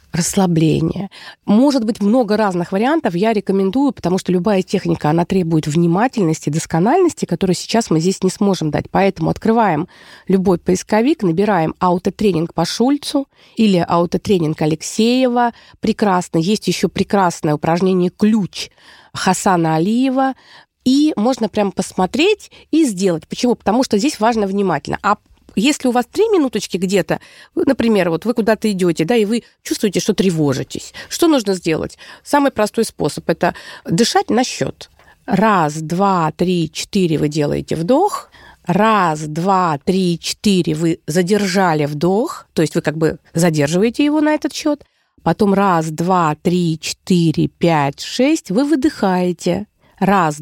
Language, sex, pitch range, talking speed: Russian, female, 170-230 Hz, 140 wpm